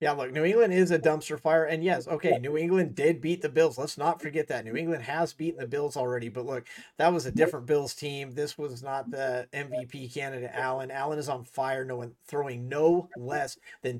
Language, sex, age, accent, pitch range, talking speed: English, male, 40-59, American, 135-165 Hz, 220 wpm